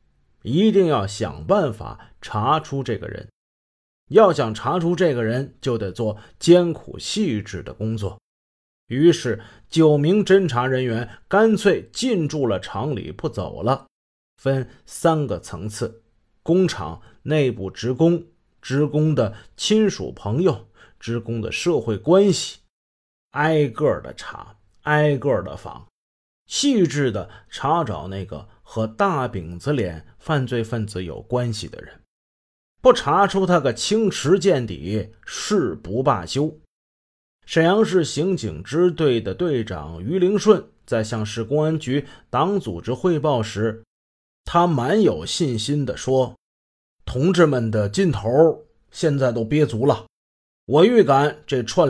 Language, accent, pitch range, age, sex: Chinese, native, 105-160 Hz, 30-49, male